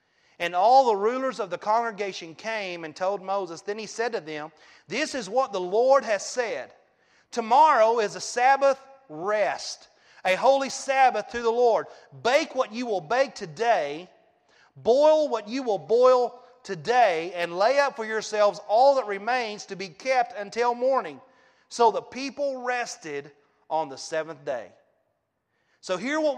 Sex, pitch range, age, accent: male, 190-255 Hz, 40-59, American